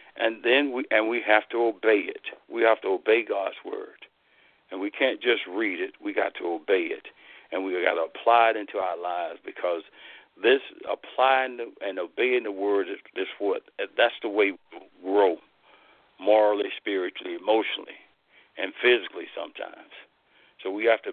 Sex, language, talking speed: male, English, 175 wpm